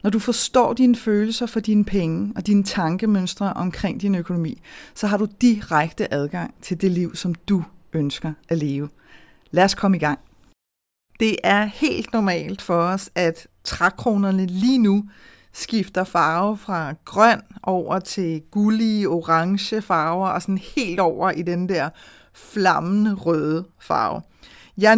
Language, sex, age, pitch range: Danish, female, 30-49, 170-225 Hz